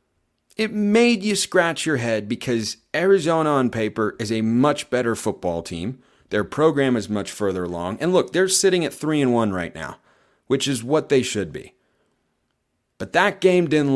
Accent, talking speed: American, 180 wpm